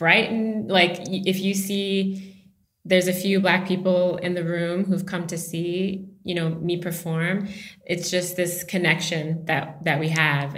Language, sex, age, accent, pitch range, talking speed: English, female, 20-39, American, 155-180 Hz, 170 wpm